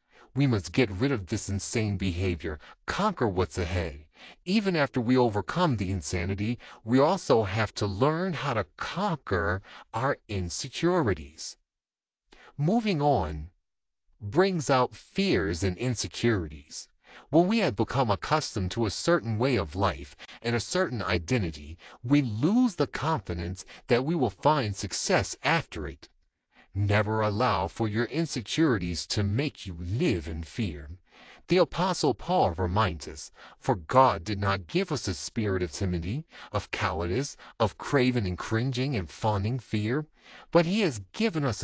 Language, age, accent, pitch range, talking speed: English, 40-59, American, 95-135 Hz, 145 wpm